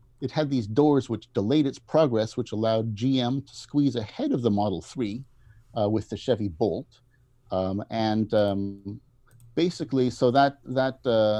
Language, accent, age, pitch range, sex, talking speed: English, American, 50-69, 105-130 Hz, male, 160 wpm